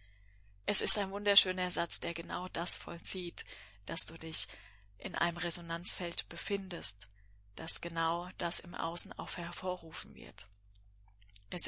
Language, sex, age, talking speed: German, female, 20-39, 130 wpm